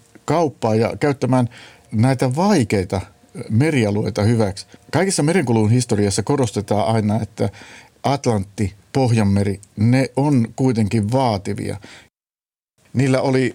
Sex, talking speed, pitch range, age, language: male, 95 wpm, 105-130 Hz, 50-69, Finnish